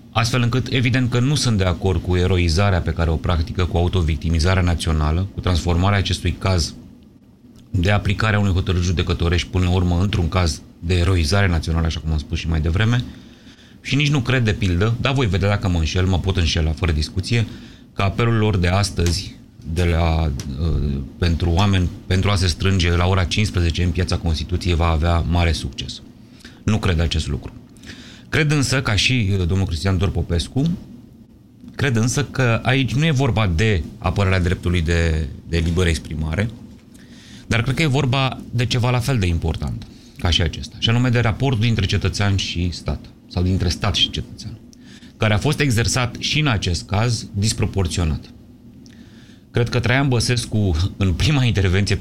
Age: 30-49